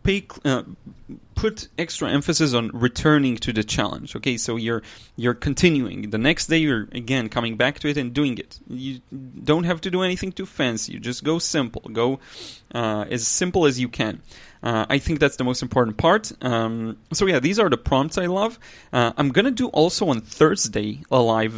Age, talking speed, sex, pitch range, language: 30-49, 195 wpm, male, 115-150 Hz, English